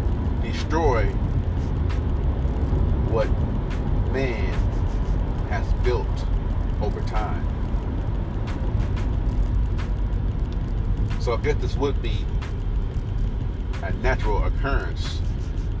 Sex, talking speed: male, 60 wpm